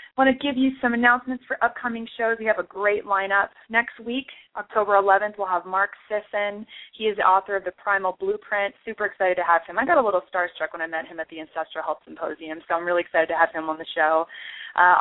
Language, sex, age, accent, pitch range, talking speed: English, female, 20-39, American, 175-225 Hz, 245 wpm